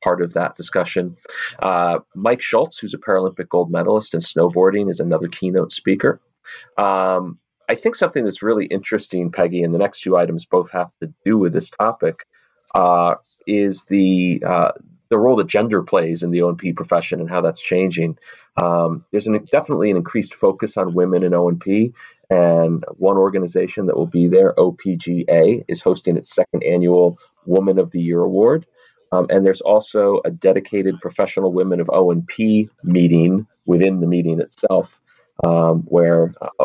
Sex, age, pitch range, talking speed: male, 30-49, 85-95 Hz, 165 wpm